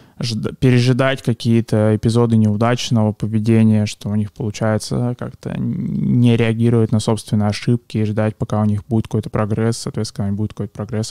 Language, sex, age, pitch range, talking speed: Russian, male, 20-39, 110-120 Hz, 145 wpm